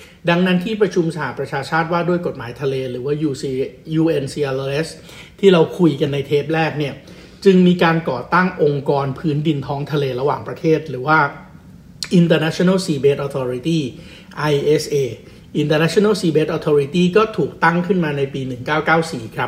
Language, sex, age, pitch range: Thai, male, 60-79, 140-170 Hz